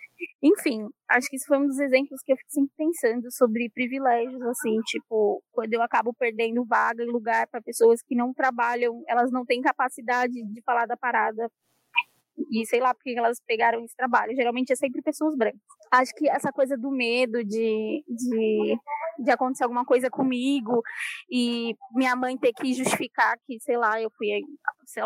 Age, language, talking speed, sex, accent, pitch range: 10-29, Portuguese, 180 wpm, female, Brazilian, 230-265 Hz